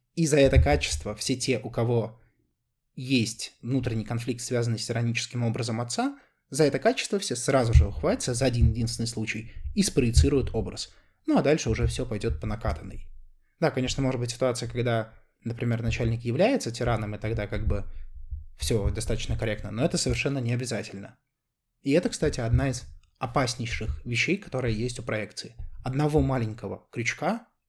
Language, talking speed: Russian, 160 wpm